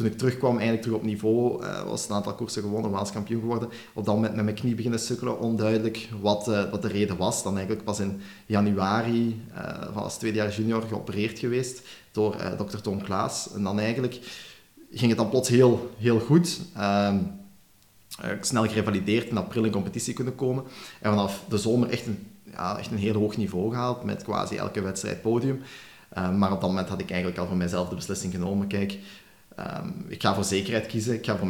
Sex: male